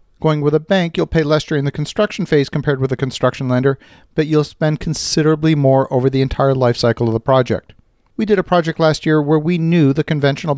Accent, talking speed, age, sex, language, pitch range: American, 225 wpm, 40-59, male, English, 130-160 Hz